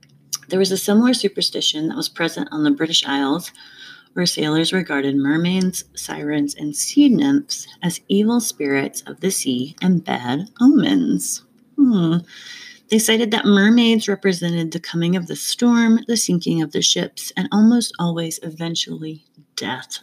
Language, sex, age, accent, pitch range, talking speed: English, female, 30-49, American, 165-245 Hz, 150 wpm